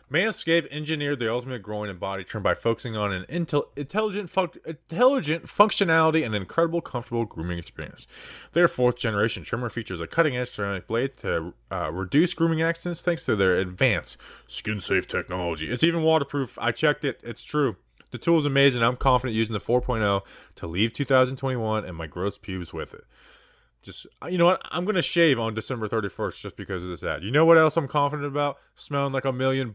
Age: 20-39